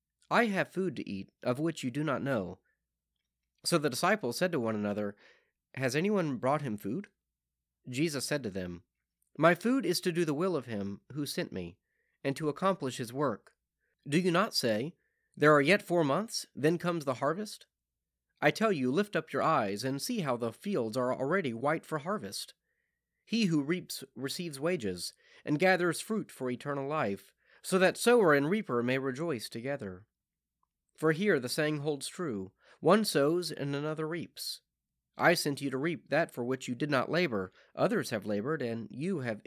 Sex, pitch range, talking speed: male, 110-175 Hz, 185 wpm